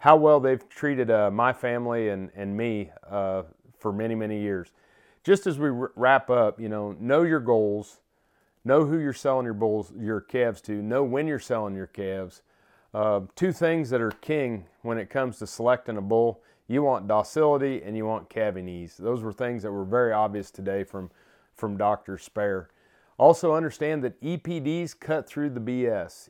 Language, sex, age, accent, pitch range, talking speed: English, male, 40-59, American, 105-145 Hz, 185 wpm